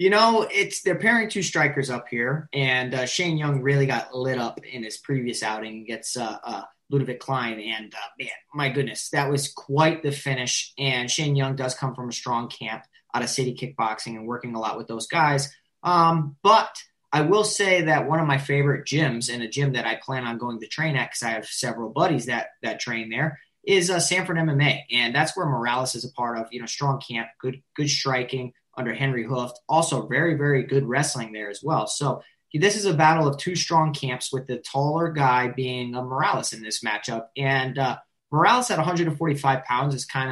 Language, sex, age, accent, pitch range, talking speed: English, male, 20-39, American, 125-155 Hz, 215 wpm